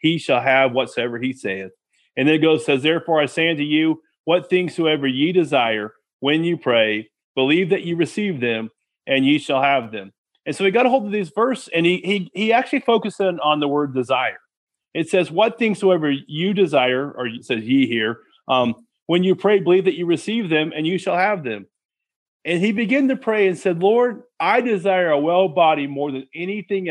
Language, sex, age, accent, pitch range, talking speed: English, male, 30-49, American, 140-200 Hz, 215 wpm